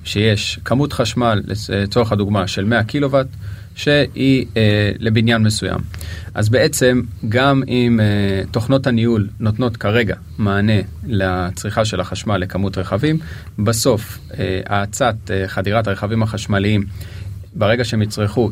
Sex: male